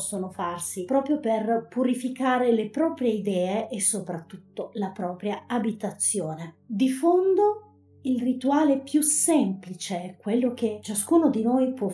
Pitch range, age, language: 210-260 Hz, 30-49, Italian